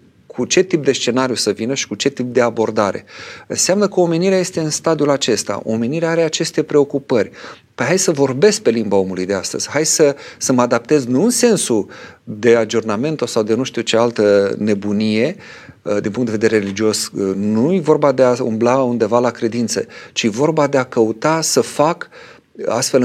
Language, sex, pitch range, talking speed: Romanian, male, 110-150 Hz, 185 wpm